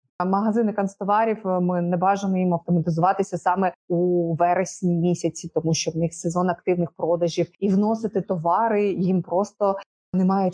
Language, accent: Ukrainian, native